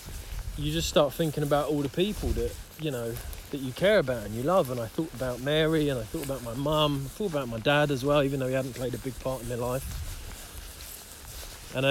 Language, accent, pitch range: English, British, 95-145 Hz